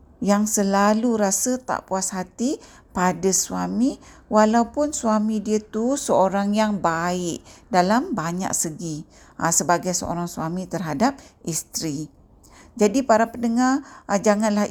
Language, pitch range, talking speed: Malay, 185-245 Hz, 110 wpm